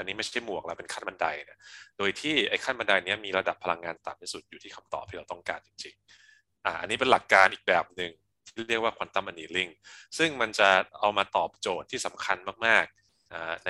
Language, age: Thai, 20-39